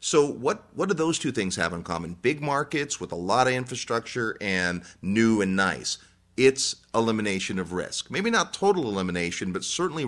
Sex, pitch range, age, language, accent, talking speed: male, 90-120 Hz, 40-59, English, American, 185 wpm